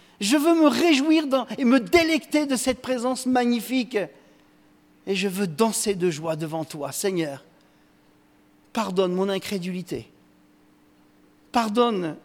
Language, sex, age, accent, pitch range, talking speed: French, male, 50-69, French, 150-200 Hz, 120 wpm